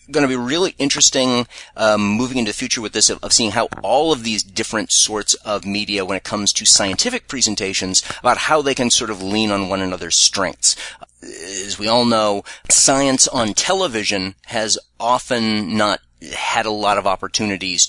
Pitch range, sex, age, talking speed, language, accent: 95-110 Hz, male, 30-49, 180 wpm, English, American